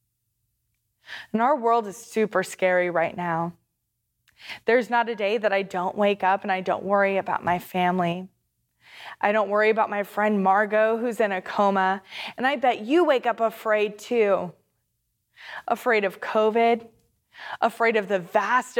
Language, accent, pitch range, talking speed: English, American, 185-230 Hz, 160 wpm